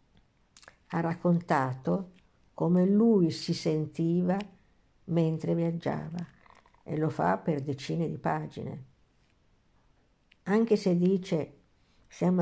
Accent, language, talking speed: native, Italian, 90 wpm